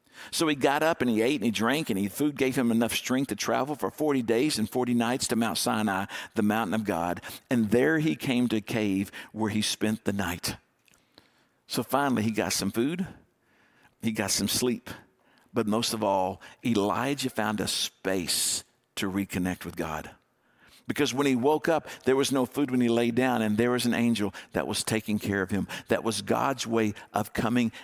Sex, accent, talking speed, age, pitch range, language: male, American, 205 wpm, 50-69, 105-130 Hz, English